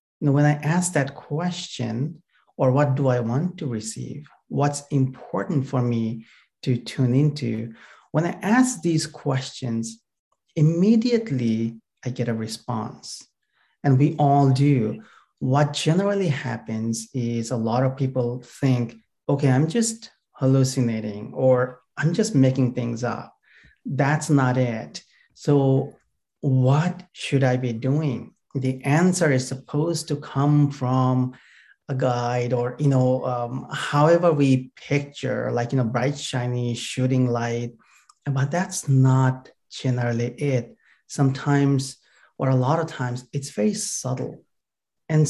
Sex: male